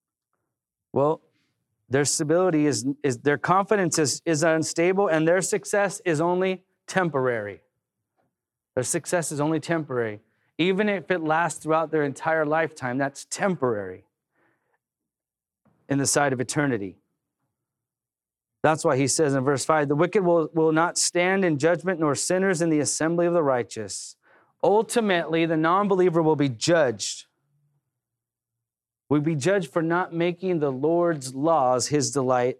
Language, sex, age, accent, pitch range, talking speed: English, male, 30-49, American, 135-170 Hz, 140 wpm